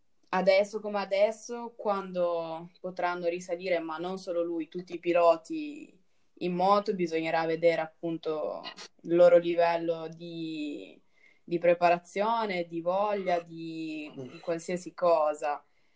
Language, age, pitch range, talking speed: Italian, 20-39, 170-190 Hz, 115 wpm